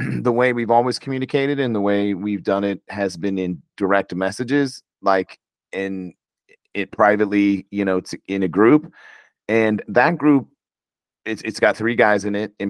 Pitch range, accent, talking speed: 95-115 Hz, American, 170 wpm